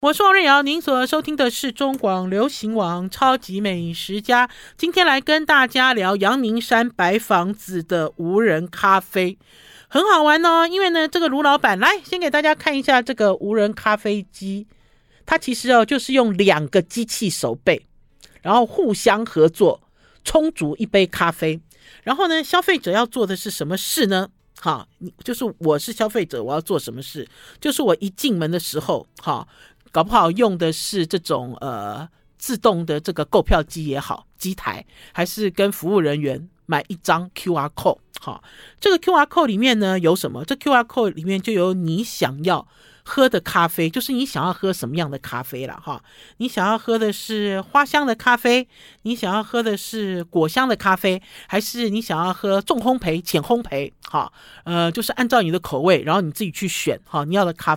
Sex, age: male, 50-69